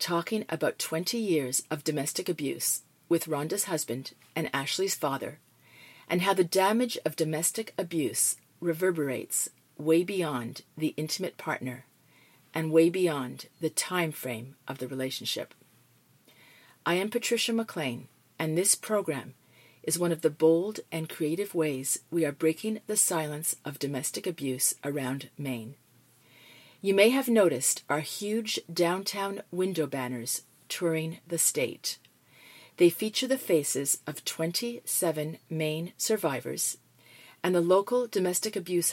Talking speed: 130 wpm